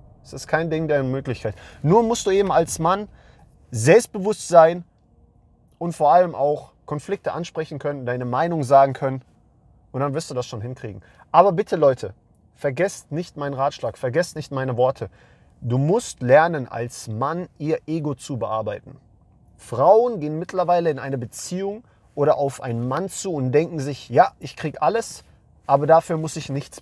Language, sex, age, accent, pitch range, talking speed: English, male, 30-49, German, 125-170 Hz, 170 wpm